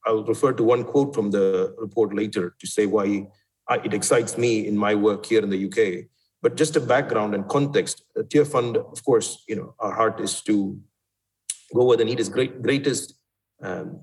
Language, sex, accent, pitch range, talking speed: English, male, Indian, 105-150 Hz, 210 wpm